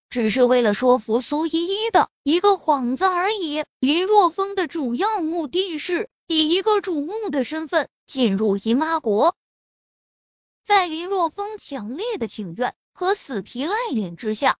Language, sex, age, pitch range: Chinese, female, 20-39, 250-355 Hz